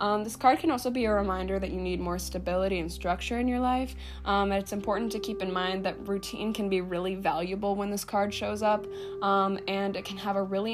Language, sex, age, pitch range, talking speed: English, female, 10-29, 185-215 Hz, 245 wpm